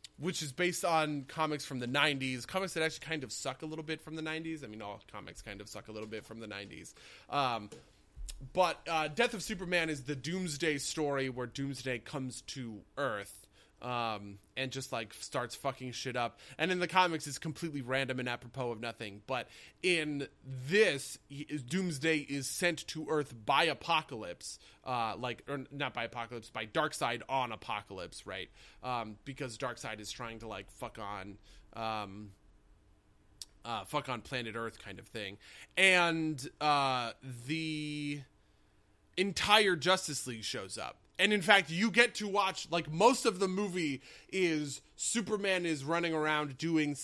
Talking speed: 170 wpm